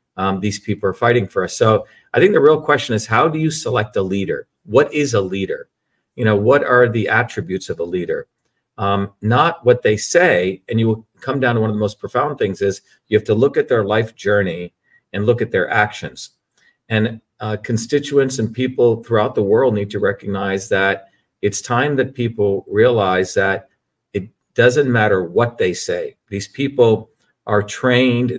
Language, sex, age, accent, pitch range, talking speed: English, male, 50-69, American, 100-125 Hz, 195 wpm